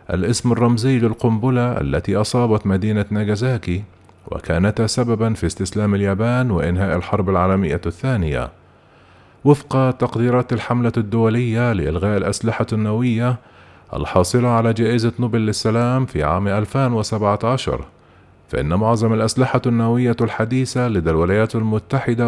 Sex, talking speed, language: male, 105 wpm, Arabic